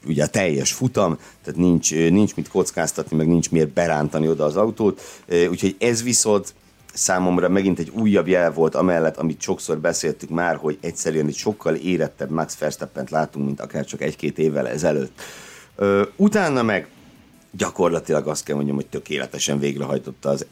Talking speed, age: 160 wpm, 60-79